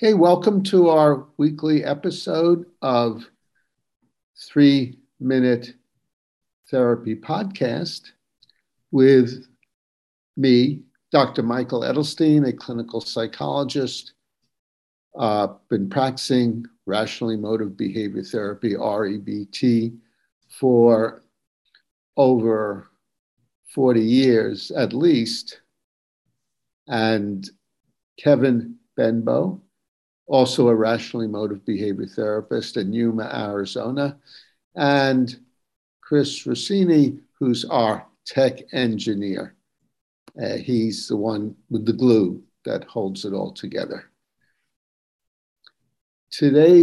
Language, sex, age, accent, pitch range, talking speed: English, male, 50-69, American, 115-140 Hz, 85 wpm